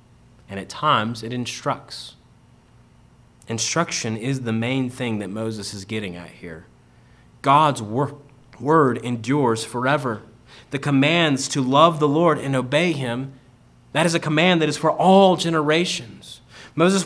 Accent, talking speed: American, 135 wpm